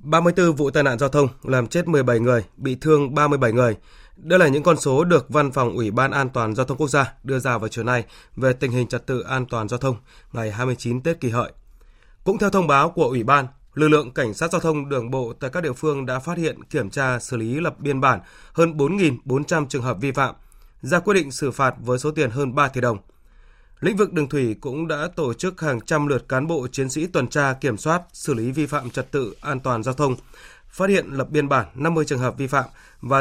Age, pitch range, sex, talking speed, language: 20-39, 125-155 Hz, male, 245 wpm, Vietnamese